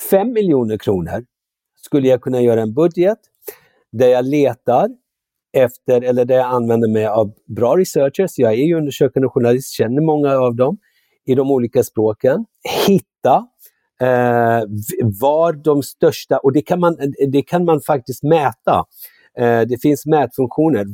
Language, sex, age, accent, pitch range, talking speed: Swedish, male, 50-69, native, 115-150 Hz, 150 wpm